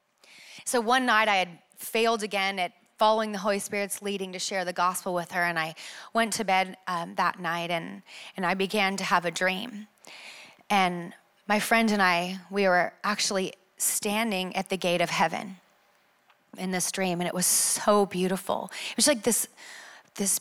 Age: 30-49